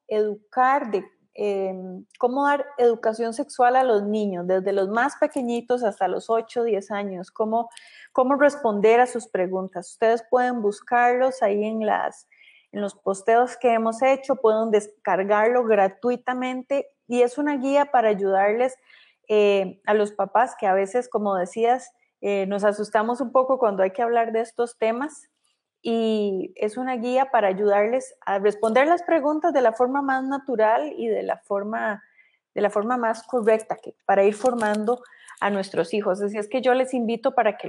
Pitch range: 210-255 Hz